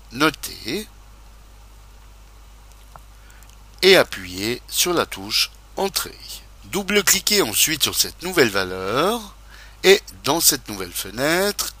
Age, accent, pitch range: 60-79, French, 100-155 Hz